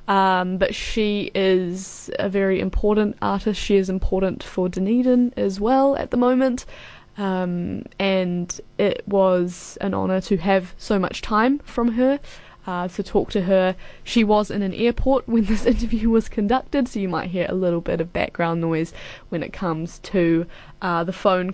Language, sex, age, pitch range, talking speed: English, female, 10-29, 180-210 Hz, 175 wpm